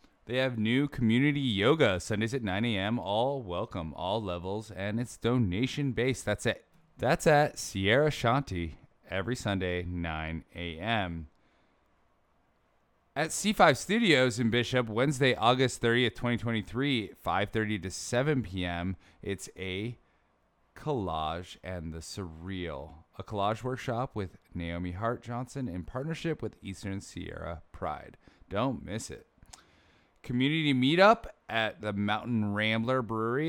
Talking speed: 120 wpm